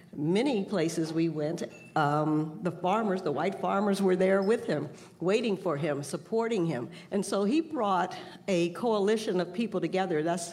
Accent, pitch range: American, 165-195 Hz